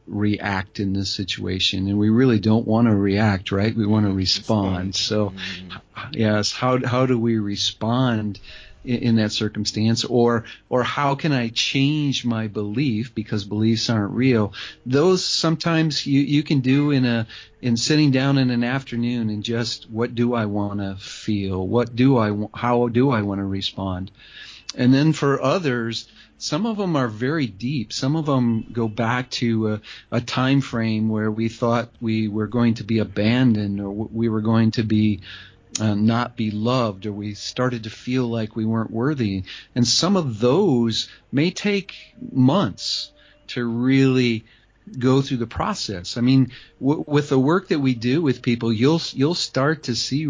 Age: 40-59